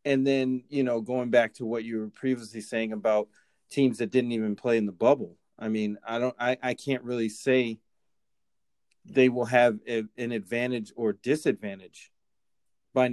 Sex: male